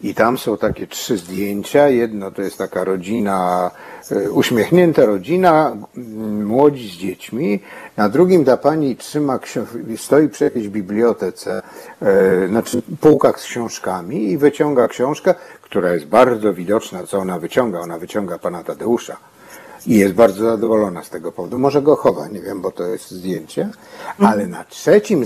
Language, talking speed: Polish, 145 wpm